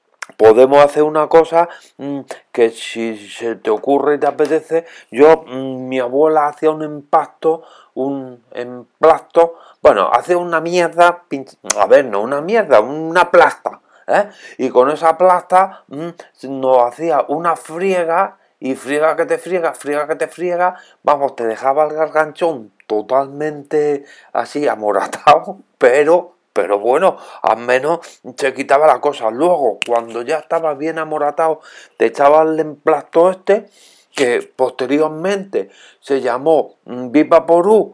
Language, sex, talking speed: Spanish, male, 130 wpm